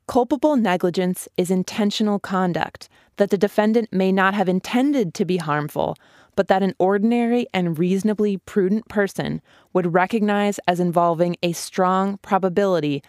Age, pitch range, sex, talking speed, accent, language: 20-39, 165-200 Hz, female, 140 wpm, American, English